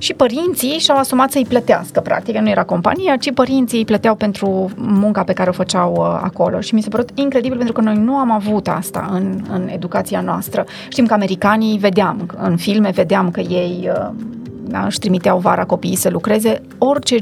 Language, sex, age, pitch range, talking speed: Romanian, female, 30-49, 190-235 Hz, 190 wpm